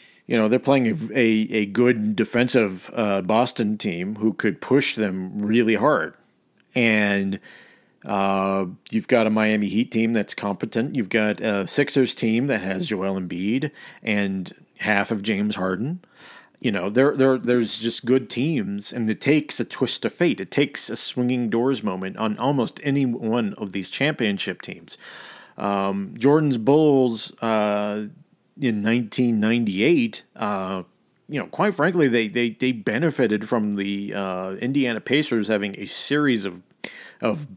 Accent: American